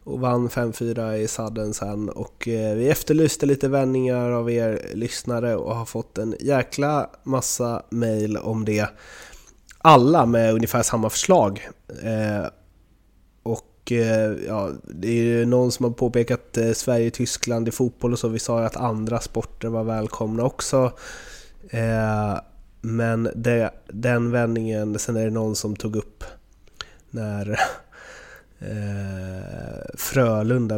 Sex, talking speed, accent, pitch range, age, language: male, 135 wpm, native, 105-115 Hz, 20-39, Swedish